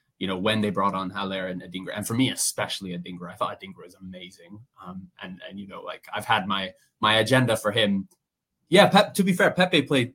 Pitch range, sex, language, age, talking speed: 100-125 Hz, male, English, 20-39, 230 wpm